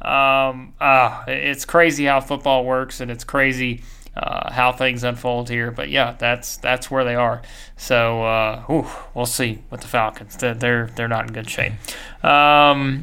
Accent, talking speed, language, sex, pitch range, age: American, 170 wpm, English, male, 125-155 Hz, 30-49